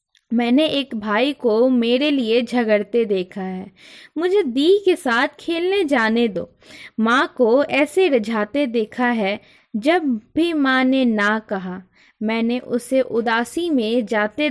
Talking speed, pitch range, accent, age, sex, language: 135 wpm, 210-275 Hz, native, 20-39, female, Hindi